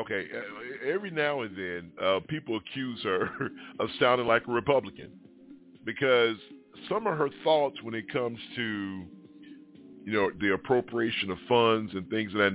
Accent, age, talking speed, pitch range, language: American, 40-59, 160 wpm, 100-155 Hz, English